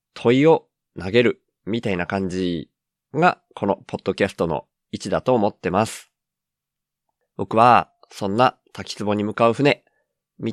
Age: 20-39